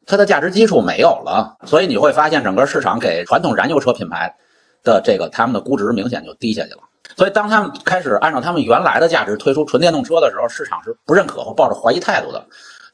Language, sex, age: Chinese, male, 50-69